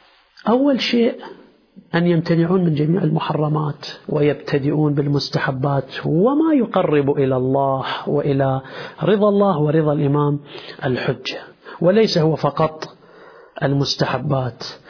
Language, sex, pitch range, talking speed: Arabic, male, 140-190 Hz, 95 wpm